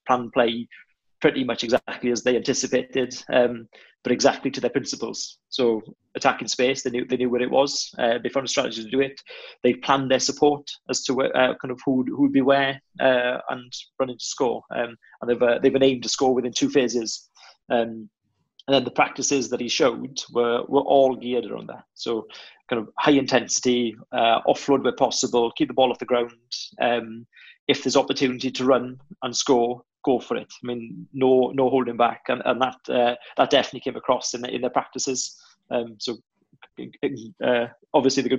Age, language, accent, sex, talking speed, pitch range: 30-49, English, British, male, 195 wpm, 120-135 Hz